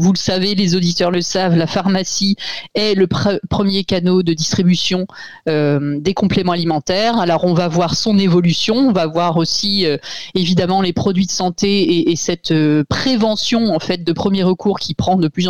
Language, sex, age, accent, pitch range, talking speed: French, female, 30-49, French, 165-210 Hz, 195 wpm